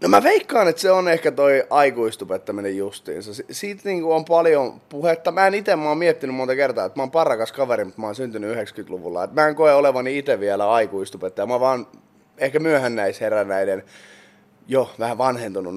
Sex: male